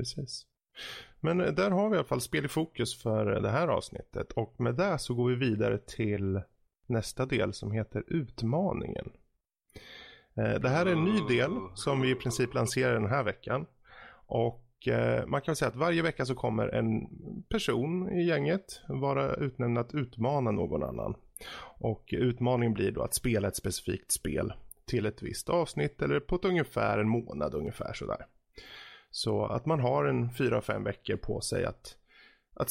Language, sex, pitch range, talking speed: Swedish, male, 110-145 Hz, 170 wpm